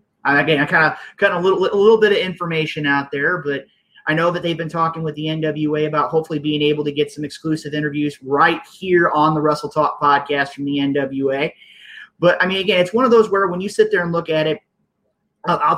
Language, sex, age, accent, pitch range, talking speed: English, male, 30-49, American, 145-170 Hz, 240 wpm